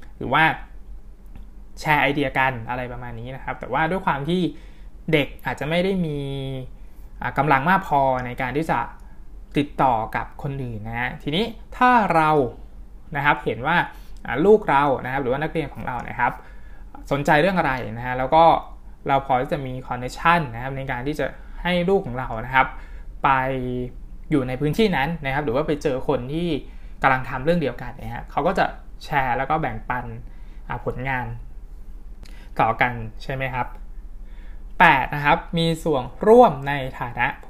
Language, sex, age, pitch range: Thai, male, 20-39, 125-165 Hz